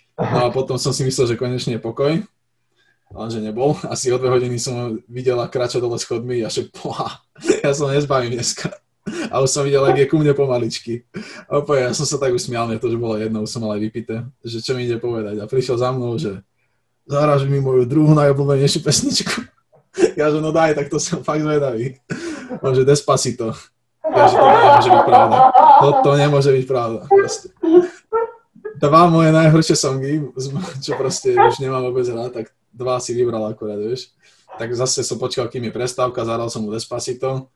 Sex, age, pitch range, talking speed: male, 20-39, 120-145 Hz, 195 wpm